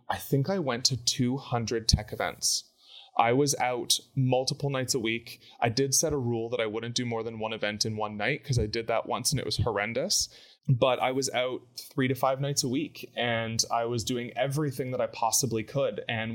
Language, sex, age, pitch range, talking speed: English, male, 20-39, 110-130 Hz, 220 wpm